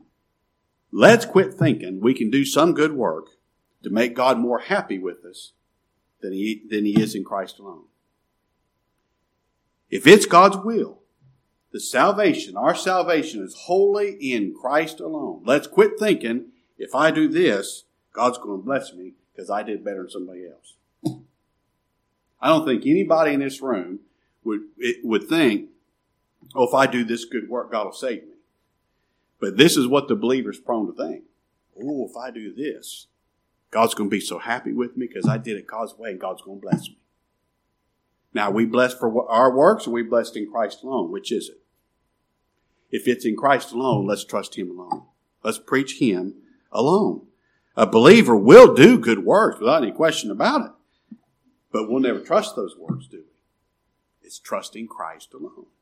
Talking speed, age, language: 175 wpm, 50-69, English